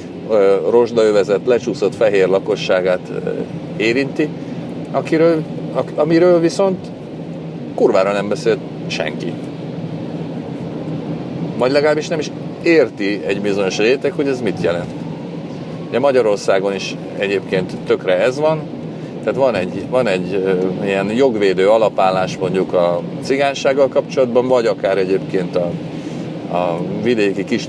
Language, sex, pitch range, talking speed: Hungarian, male, 95-160 Hz, 100 wpm